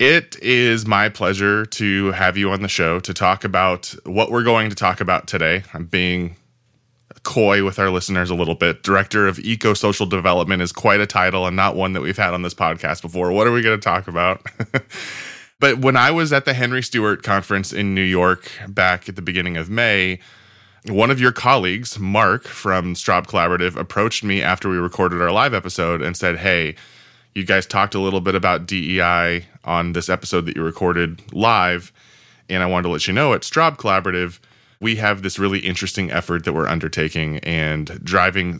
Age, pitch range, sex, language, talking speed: 20-39, 90-105 Hz, male, English, 200 wpm